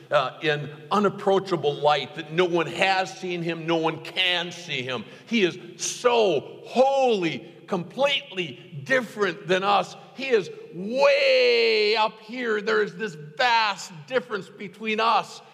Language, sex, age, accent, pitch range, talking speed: English, male, 50-69, American, 120-195 Hz, 135 wpm